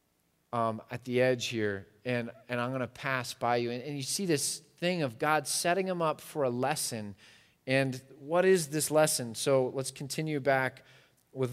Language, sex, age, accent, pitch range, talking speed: English, male, 30-49, American, 120-150 Hz, 195 wpm